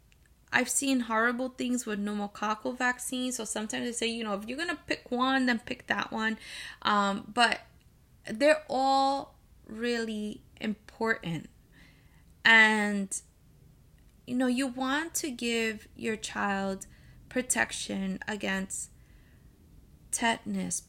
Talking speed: 115 wpm